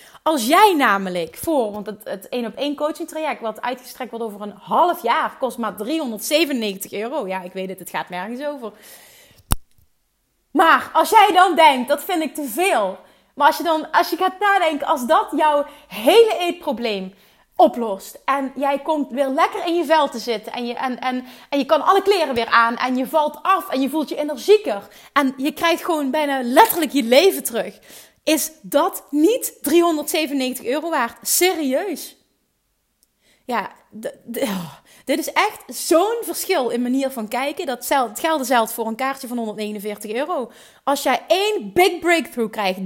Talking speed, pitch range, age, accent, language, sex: 180 wpm, 235-320 Hz, 30-49, Dutch, Dutch, female